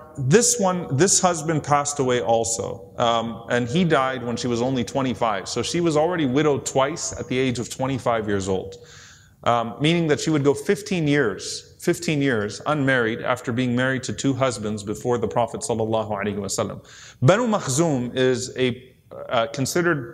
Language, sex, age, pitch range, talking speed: English, male, 30-49, 120-155 Hz, 165 wpm